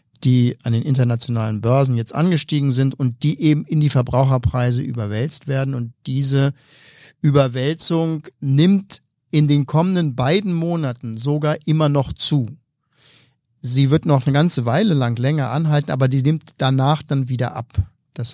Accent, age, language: German, 50-69, German